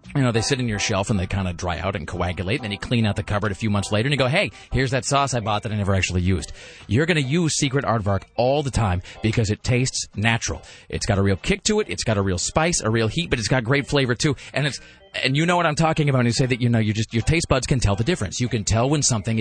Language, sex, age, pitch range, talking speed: English, male, 30-49, 105-145 Hz, 320 wpm